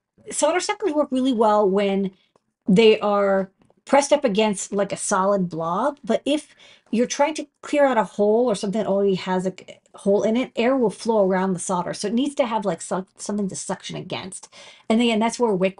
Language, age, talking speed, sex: English, 40-59, 210 wpm, female